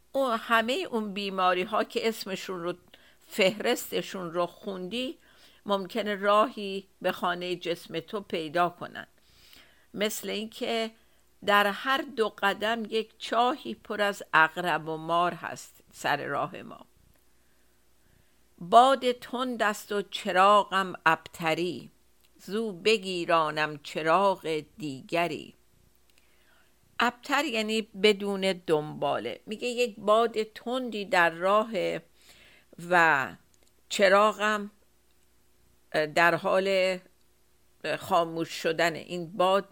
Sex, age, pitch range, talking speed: female, 50-69, 170-215 Hz, 95 wpm